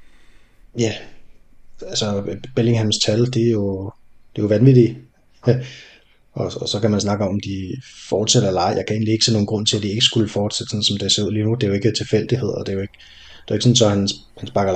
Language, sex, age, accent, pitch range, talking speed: Danish, male, 20-39, native, 105-120 Hz, 255 wpm